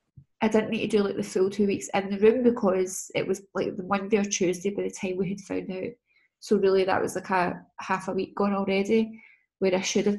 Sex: female